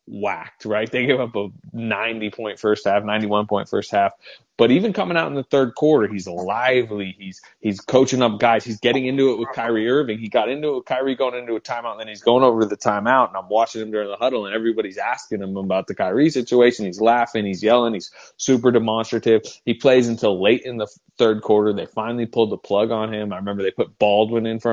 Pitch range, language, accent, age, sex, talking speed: 105-120 Hz, English, American, 20-39, male, 240 wpm